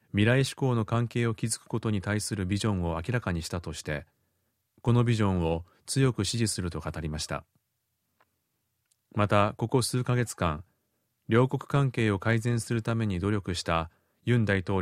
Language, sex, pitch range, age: Japanese, male, 95-120 Hz, 30-49